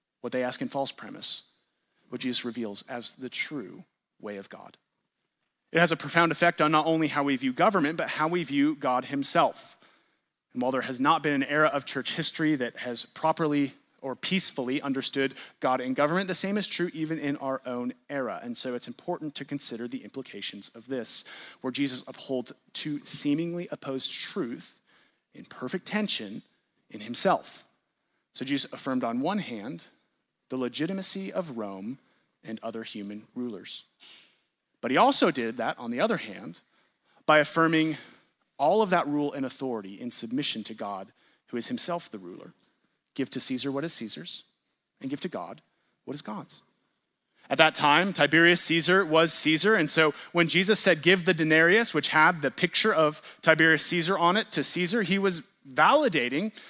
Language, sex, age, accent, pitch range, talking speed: English, male, 30-49, American, 130-175 Hz, 175 wpm